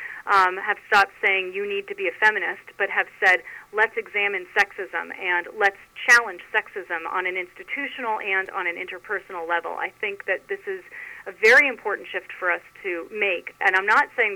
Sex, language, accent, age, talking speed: female, English, American, 30-49, 190 wpm